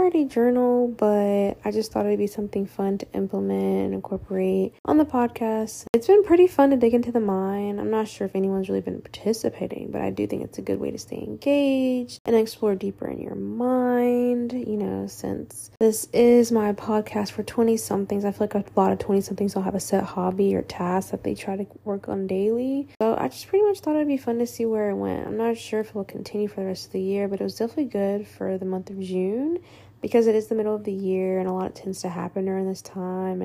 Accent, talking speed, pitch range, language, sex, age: American, 245 wpm, 195-235 Hz, English, female, 10-29